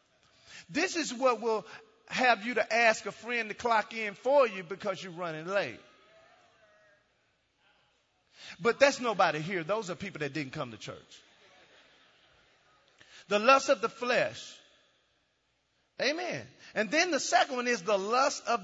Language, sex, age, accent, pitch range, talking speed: English, male, 40-59, American, 205-270 Hz, 150 wpm